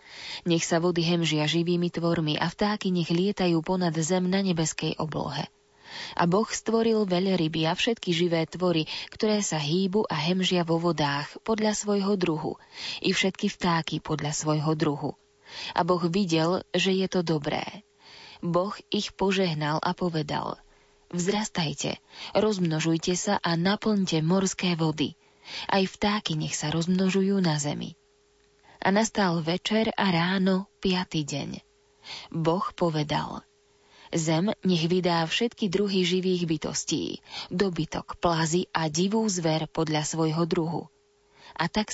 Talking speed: 130 wpm